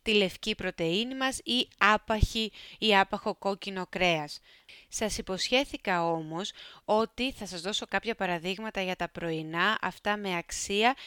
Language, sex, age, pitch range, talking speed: Greek, female, 20-39, 180-215 Hz, 135 wpm